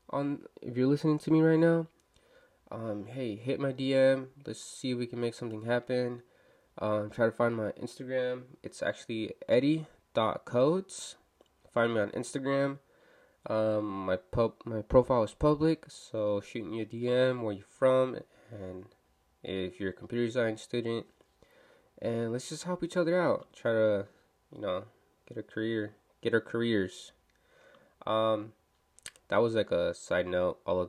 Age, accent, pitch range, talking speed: 20-39, American, 105-140 Hz, 160 wpm